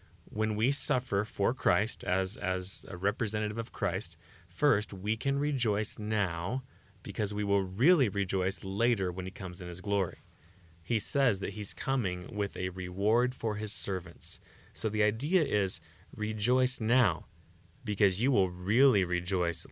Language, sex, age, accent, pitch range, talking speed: English, male, 30-49, American, 90-120 Hz, 150 wpm